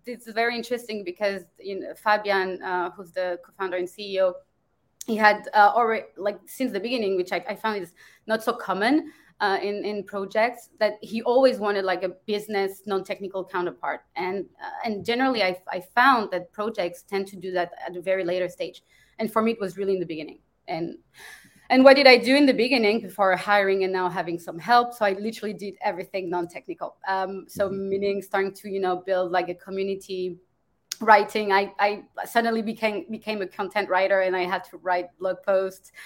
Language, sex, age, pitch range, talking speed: English, female, 20-39, 180-210 Hz, 195 wpm